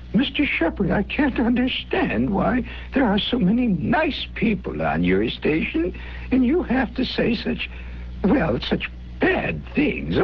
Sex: male